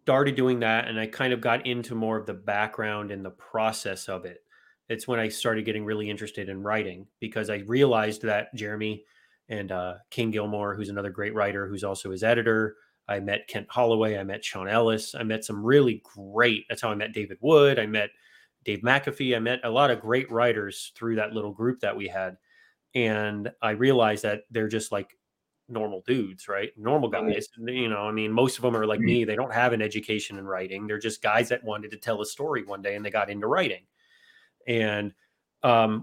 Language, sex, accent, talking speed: English, male, American, 215 wpm